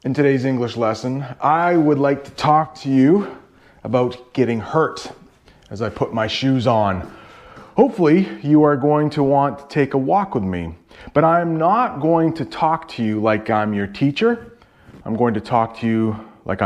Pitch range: 120-180 Hz